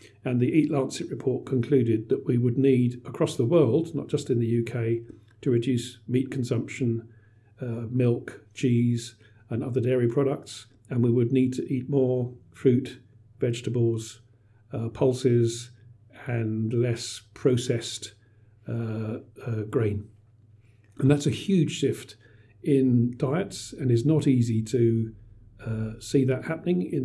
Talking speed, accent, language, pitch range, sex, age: 140 wpm, British, English, 115-135 Hz, male, 50-69